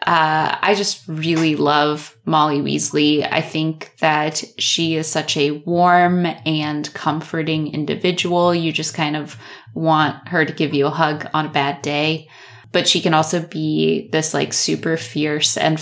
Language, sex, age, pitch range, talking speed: English, female, 20-39, 150-175 Hz, 165 wpm